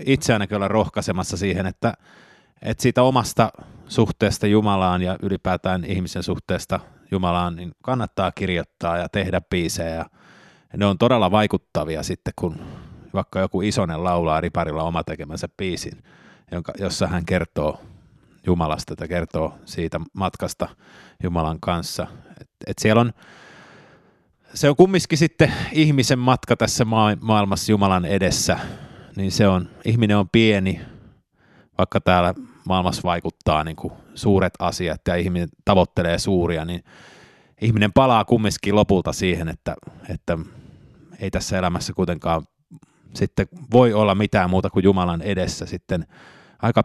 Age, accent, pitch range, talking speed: 30-49, native, 90-115 Hz, 125 wpm